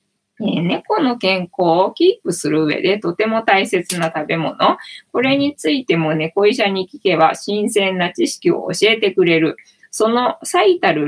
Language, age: Japanese, 20-39